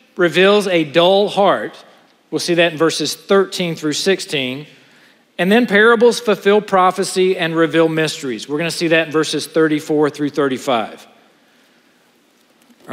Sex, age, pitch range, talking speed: male, 40-59, 120-195 Hz, 135 wpm